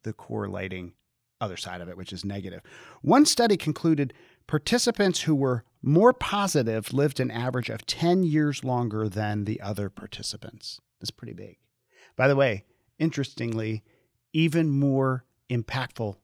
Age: 40-59